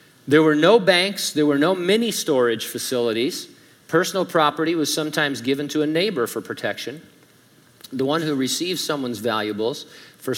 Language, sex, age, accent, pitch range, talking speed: English, male, 50-69, American, 120-155 Hz, 155 wpm